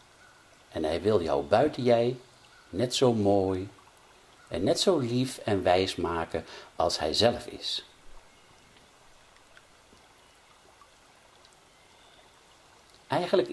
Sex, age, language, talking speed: male, 60-79, Dutch, 95 wpm